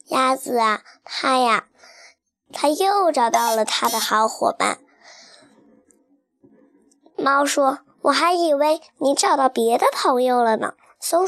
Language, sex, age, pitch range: Chinese, male, 10-29, 235-335 Hz